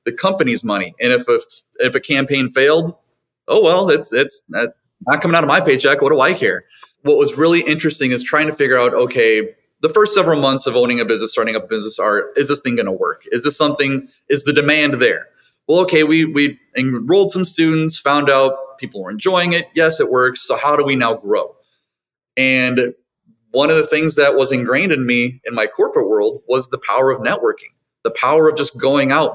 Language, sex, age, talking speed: English, male, 30-49, 220 wpm